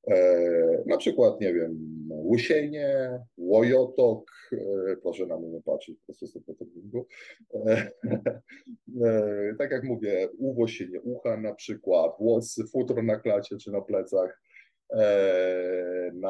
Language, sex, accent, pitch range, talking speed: Polish, male, native, 95-125 Hz, 120 wpm